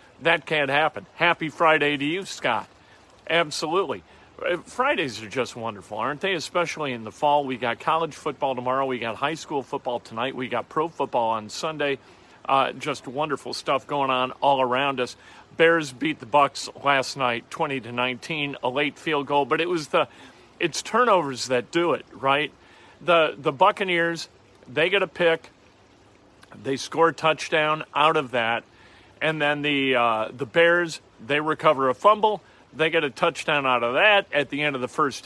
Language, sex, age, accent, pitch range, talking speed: English, male, 40-59, American, 130-170 Hz, 180 wpm